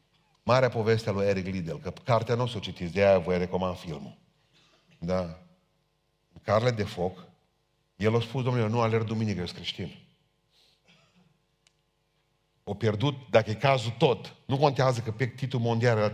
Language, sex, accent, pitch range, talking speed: Romanian, male, native, 100-145 Hz, 165 wpm